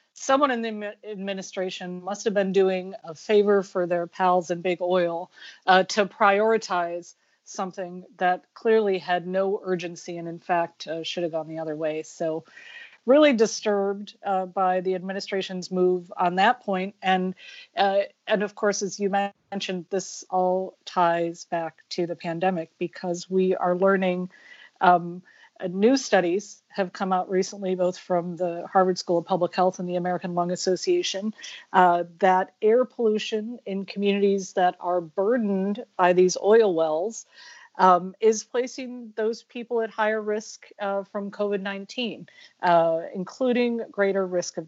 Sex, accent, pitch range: female, American, 180-210 Hz